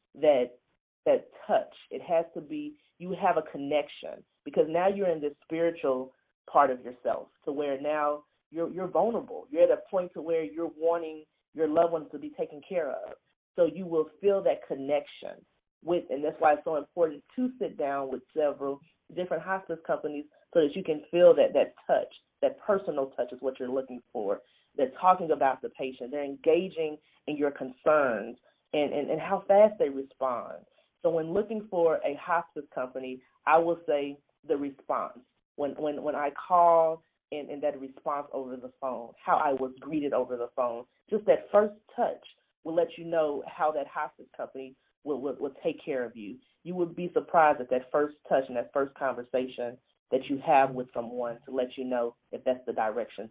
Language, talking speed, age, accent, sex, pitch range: English, 190 wpm, 40-59, American, female, 135-170 Hz